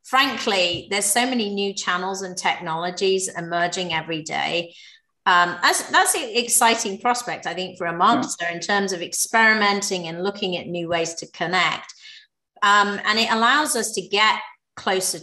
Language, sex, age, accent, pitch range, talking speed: English, female, 30-49, British, 175-205 Hz, 160 wpm